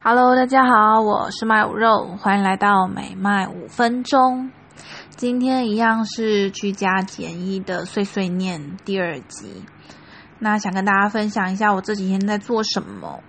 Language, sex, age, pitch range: English, female, 20-39, 190-220 Hz